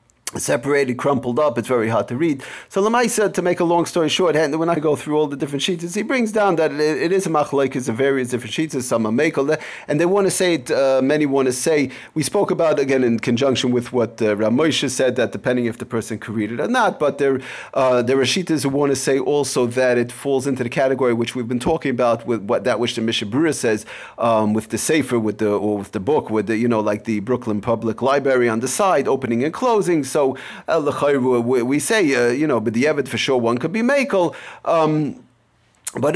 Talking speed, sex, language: 245 wpm, male, English